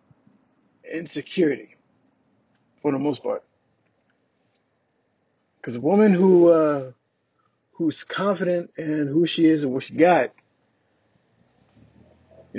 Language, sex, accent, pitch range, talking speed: English, male, American, 155-210 Hz, 100 wpm